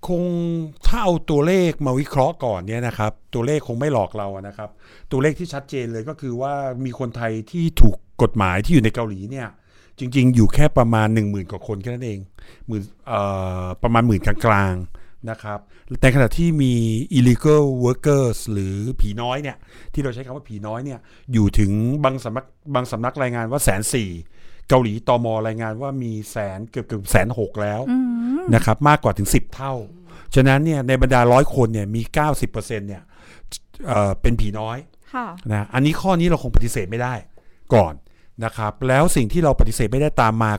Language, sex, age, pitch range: Thai, male, 60-79, 105-135 Hz